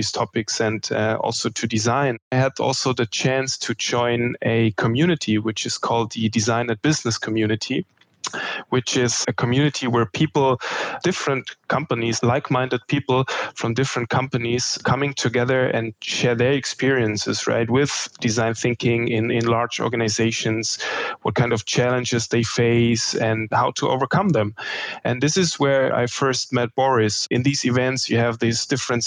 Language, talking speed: English, 155 wpm